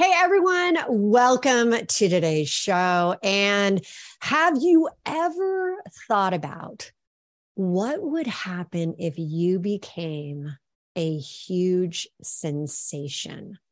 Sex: female